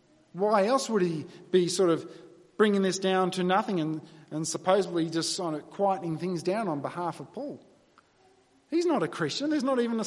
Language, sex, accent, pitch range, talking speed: English, male, Australian, 180-255 Hz, 195 wpm